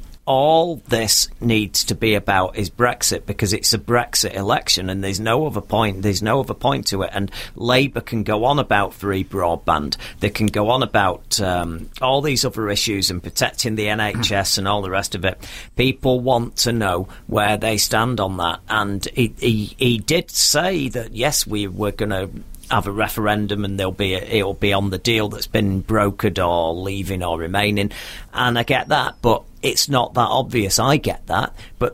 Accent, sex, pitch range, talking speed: British, male, 100-120 Hz, 200 wpm